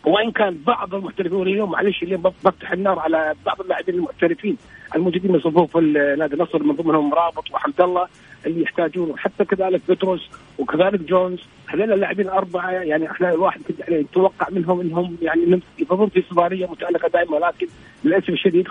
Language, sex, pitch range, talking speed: Arabic, male, 160-200 Hz, 155 wpm